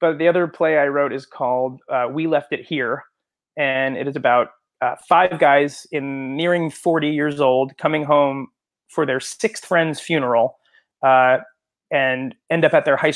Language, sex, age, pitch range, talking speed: English, male, 30-49, 130-155 Hz, 180 wpm